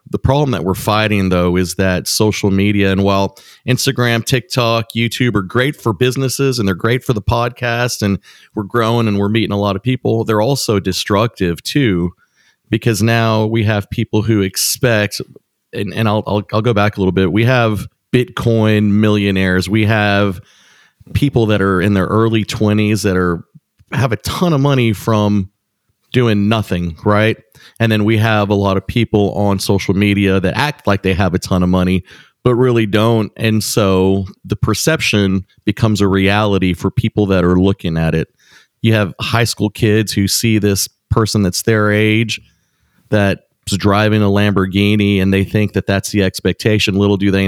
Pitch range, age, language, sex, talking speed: 100-115 Hz, 30-49, English, male, 180 wpm